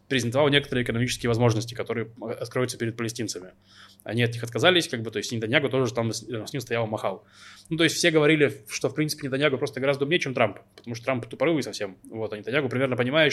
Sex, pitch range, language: male, 115-140 Hz, Russian